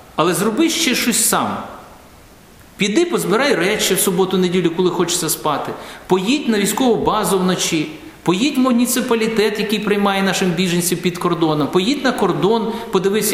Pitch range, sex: 180-230 Hz, male